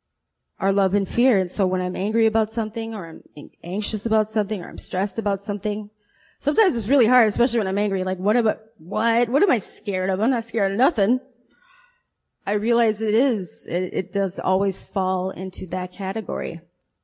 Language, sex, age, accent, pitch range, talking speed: English, female, 20-39, American, 195-245 Hz, 195 wpm